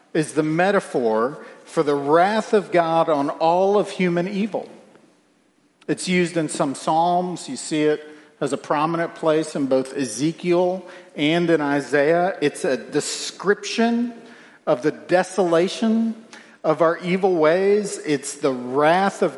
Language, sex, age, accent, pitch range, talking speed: English, male, 50-69, American, 165-220 Hz, 140 wpm